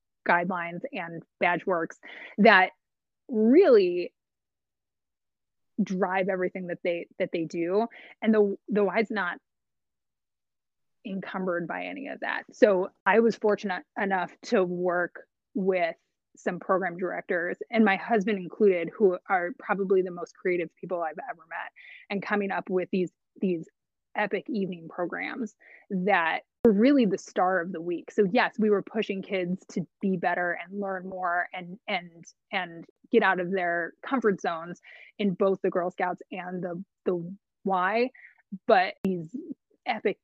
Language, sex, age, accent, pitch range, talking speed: English, female, 20-39, American, 180-215 Hz, 145 wpm